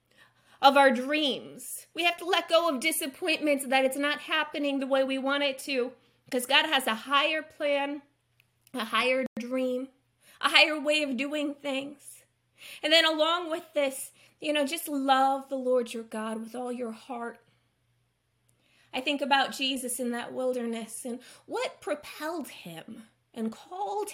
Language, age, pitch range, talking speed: English, 20-39, 230-290 Hz, 165 wpm